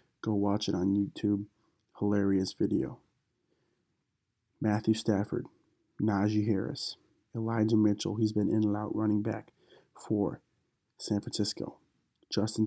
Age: 20-39